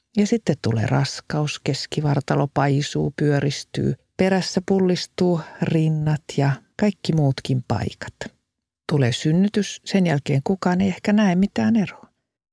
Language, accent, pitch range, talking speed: Finnish, native, 145-205 Hz, 115 wpm